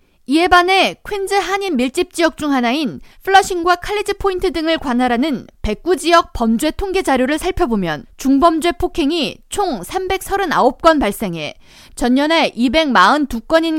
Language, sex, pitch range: Korean, female, 250-345 Hz